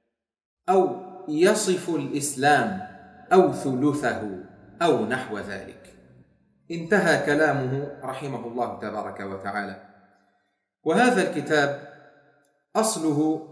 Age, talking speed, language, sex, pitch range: 30-49, 75 wpm, Arabic, male, 125-170 Hz